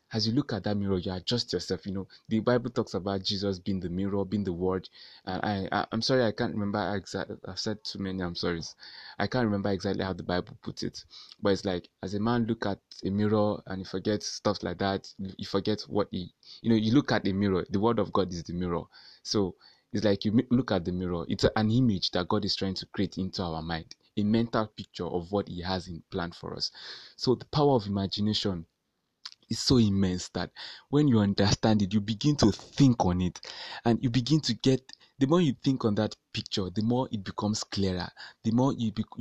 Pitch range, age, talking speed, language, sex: 95-120 Hz, 20-39, 230 wpm, English, male